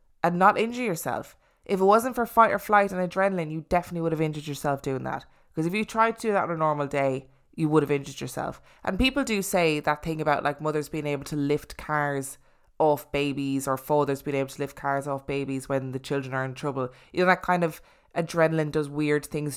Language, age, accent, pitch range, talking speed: English, 20-39, Irish, 145-185 Hz, 235 wpm